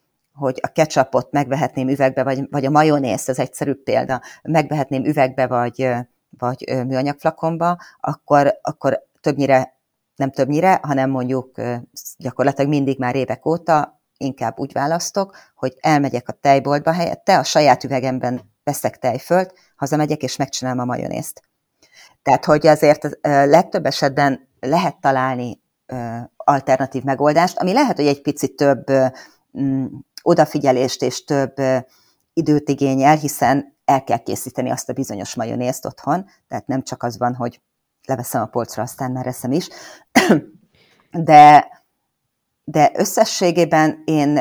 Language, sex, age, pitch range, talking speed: Hungarian, female, 40-59, 130-150 Hz, 125 wpm